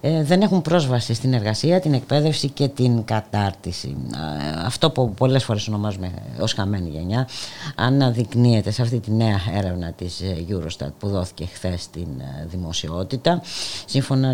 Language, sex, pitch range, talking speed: Greek, female, 100-135 Hz, 135 wpm